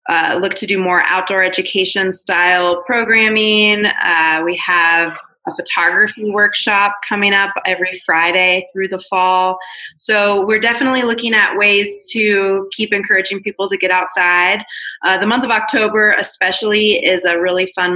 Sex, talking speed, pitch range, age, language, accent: female, 150 wpm, 180-205 Hz, 20-39, English, American